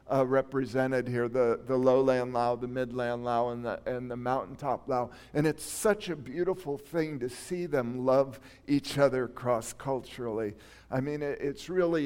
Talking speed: 170 wpm